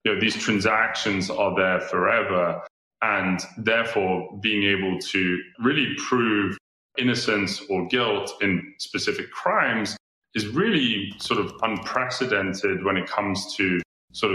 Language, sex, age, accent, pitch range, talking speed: English, male, 30-49, British, 95-120 Hz, 125 wpm